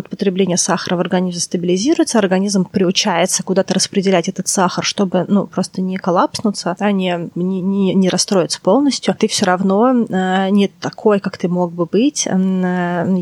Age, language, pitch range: 20-39, Russian, 180-210 Hz